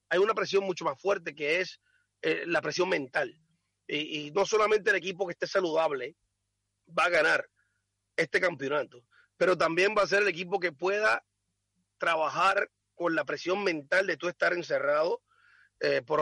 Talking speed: 170 wpm